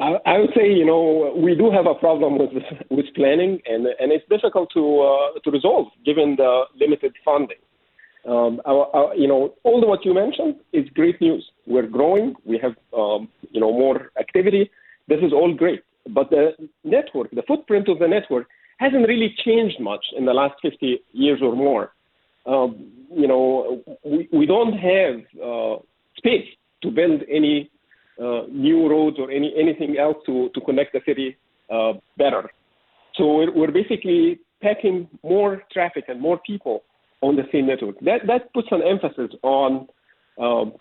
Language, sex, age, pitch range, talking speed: English, male, 50-69, 135-210 Hz, 170 wpm